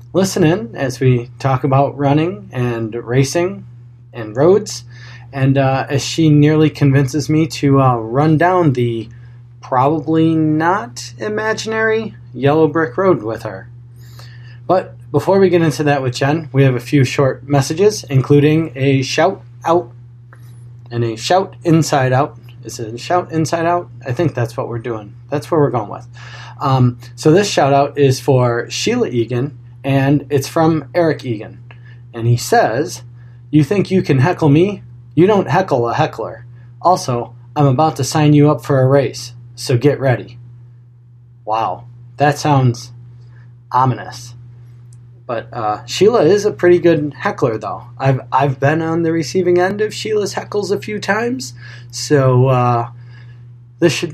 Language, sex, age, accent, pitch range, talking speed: English, male, 20-39, American, 120-155 Hz, 155 wpm